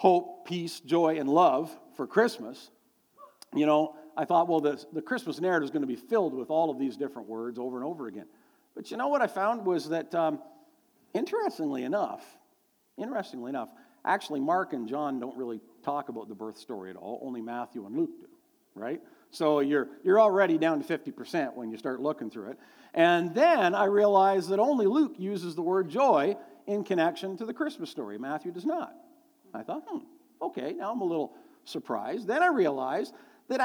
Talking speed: 195 wpm